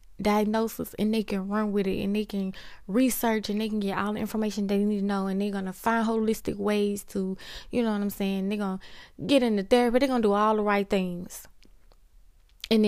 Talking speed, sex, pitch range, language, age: 220 wpm, female, 185-220 Hz, English, 20-39